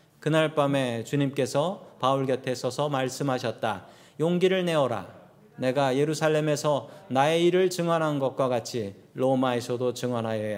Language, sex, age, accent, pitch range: Korean, male, 40-59, native, 130-170 Hz